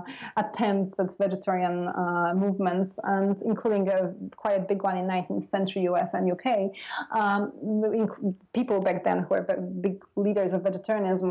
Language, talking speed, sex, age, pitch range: English, 150 wpm, female, 20-39, 185-205 Hz